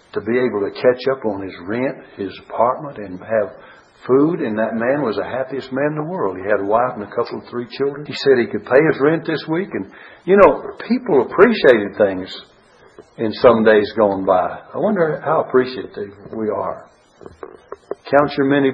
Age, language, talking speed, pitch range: 60-79, English, 200 wpm, 110-150 Hz